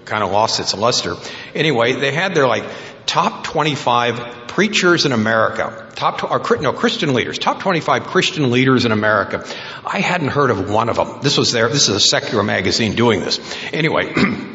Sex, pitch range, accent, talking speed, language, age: male, 110-155 Hz, American, 175 wpm, English, 60-79